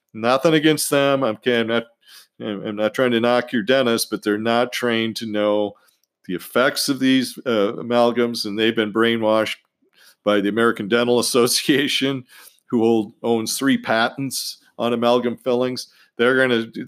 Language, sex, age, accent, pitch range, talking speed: English, male, 50-69, American, 105-125 Hz, 160 wpm